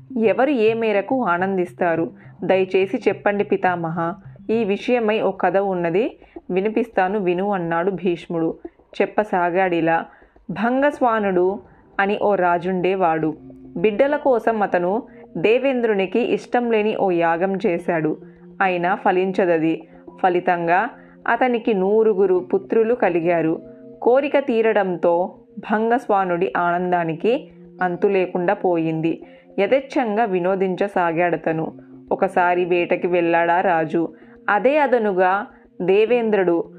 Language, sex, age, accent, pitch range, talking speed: Telugu, female, 20-39, native, 175-220 Hz, 85 wpm